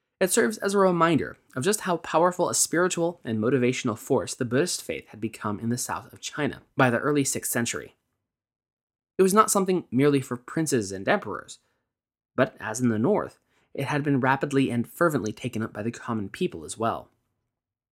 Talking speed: 190 wpm